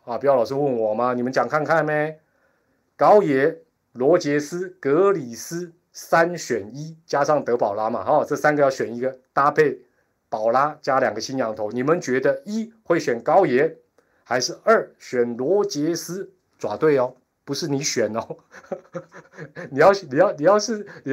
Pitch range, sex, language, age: 120-165 Hz, male, Chinese, 30-49